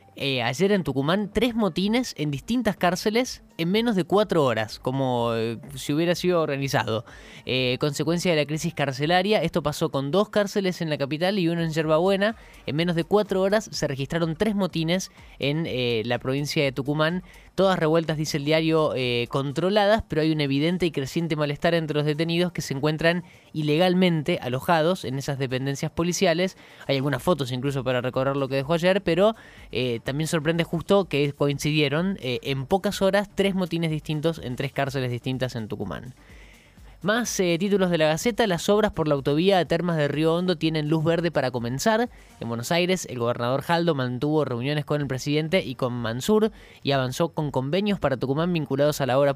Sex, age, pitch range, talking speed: male, 20-39, 135-175 Hz, 185 wpm